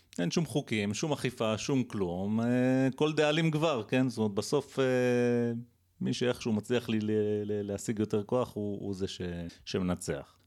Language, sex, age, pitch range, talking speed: Hebrew, male, 30-49, 100-135 Hz, 140 wpm